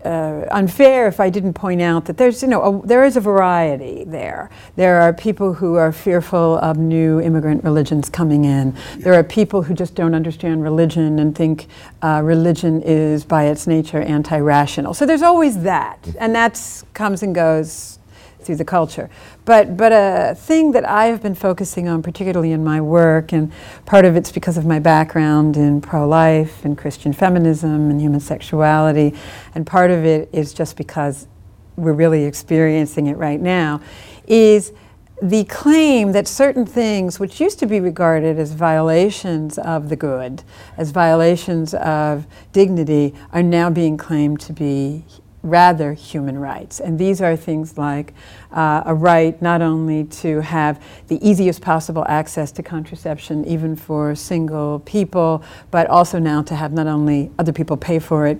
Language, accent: English, American